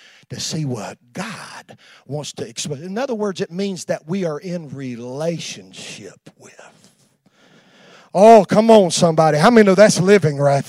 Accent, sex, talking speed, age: American, male, 170 wpm, 40-59